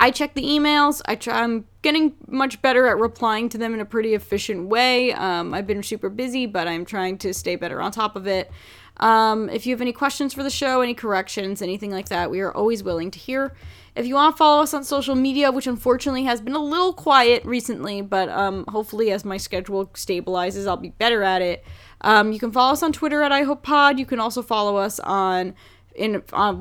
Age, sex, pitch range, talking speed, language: 10-29, female, 200-270 Hz, 230 wpm, English